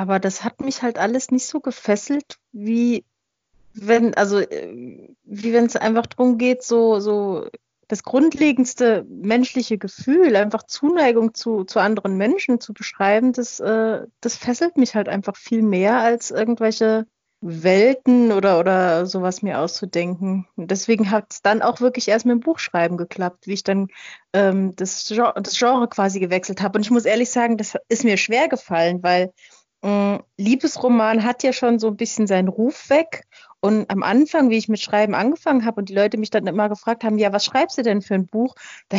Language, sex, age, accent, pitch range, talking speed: German, female, 30-49, German, 205-250 Hz, 175 wpm